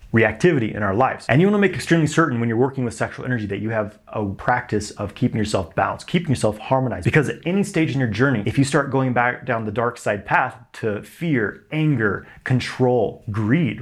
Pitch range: 110-135 Hz